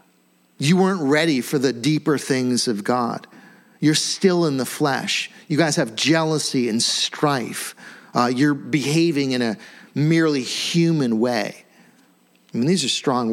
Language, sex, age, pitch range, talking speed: English, male, 40-59, 115-150 Hz, 150 wpm